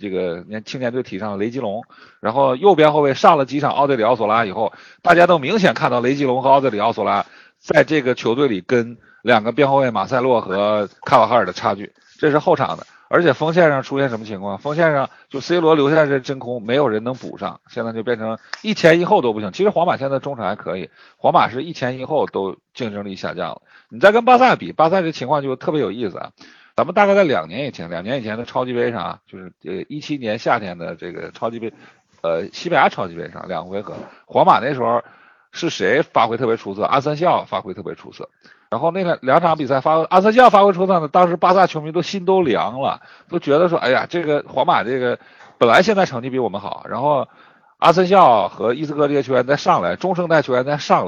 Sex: male